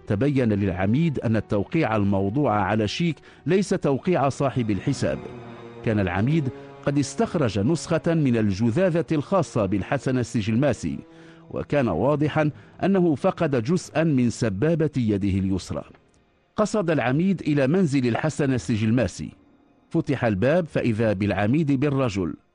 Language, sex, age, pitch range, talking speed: English, male, 50-69, 110-155 Hz, 110 wpm